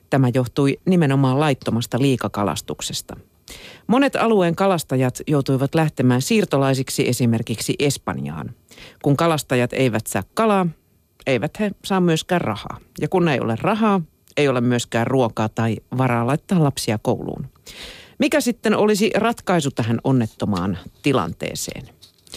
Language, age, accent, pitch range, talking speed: Finnish, 50-69, native, 125-165 Hz, 120 wpm